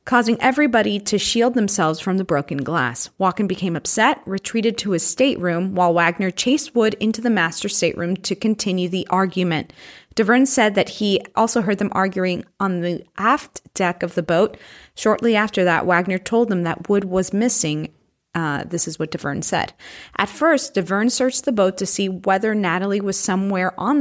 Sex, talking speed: female, 180 wpm